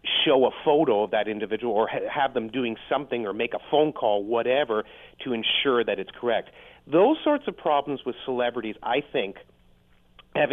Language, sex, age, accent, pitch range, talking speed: English, male, 40-59, American, 115-150 Hz, 175 wpm